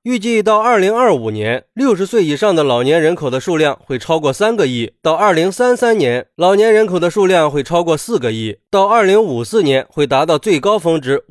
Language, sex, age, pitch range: Chinese, male, 20-39, 130-210 Hz